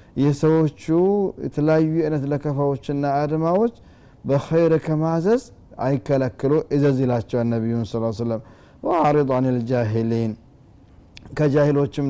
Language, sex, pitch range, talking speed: Amharic, male, 115-150 Hz, 105 wpm